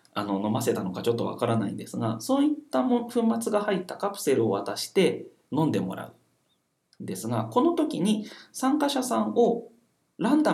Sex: male